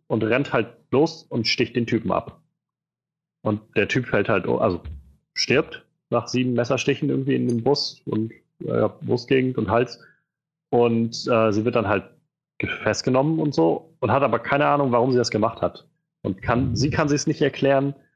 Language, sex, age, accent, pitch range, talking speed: German, male, 30-49, German, 105-135 Hz, 180 wpm